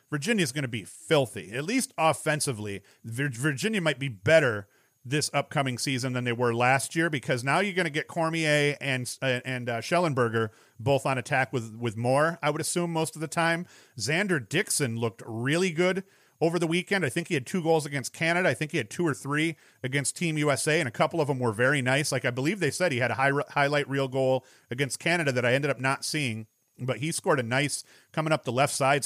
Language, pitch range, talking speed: English, 130-155 Hz, 225 wpm